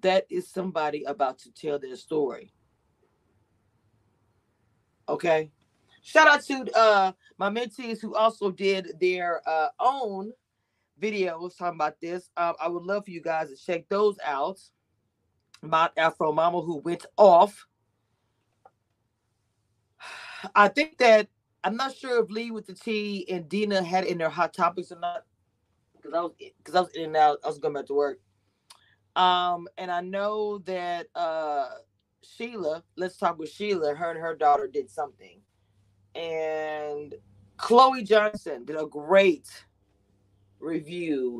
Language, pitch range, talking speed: English, 140-210 Hz, 140 wpm